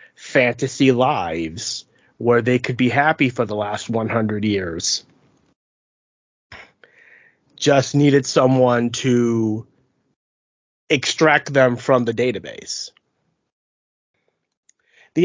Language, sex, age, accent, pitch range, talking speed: English, male, 30-49, American, 120-150 Hz, 85 wpm